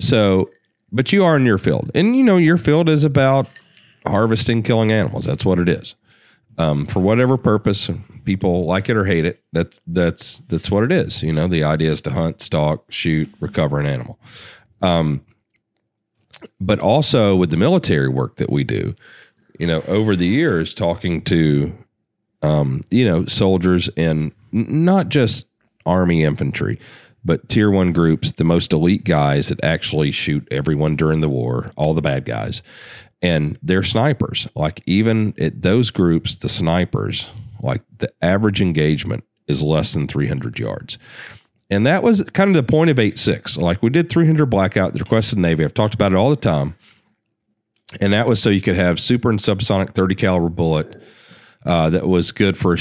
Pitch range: 85-115 Hz